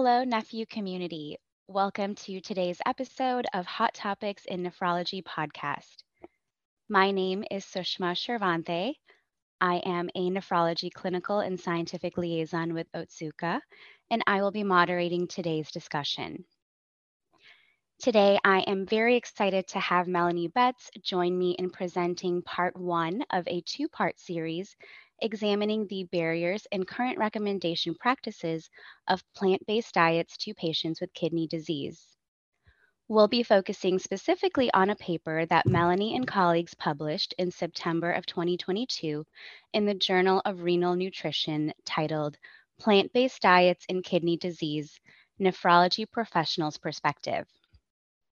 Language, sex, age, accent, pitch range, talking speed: English, female, 20-39, American, 170-205 Hz, 125 wpm